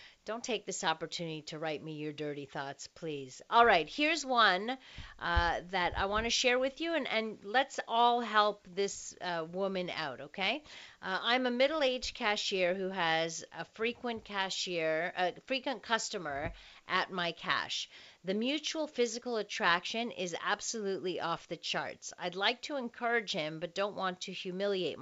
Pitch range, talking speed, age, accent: 180-250 Hz, 160 wpm, 50-69, American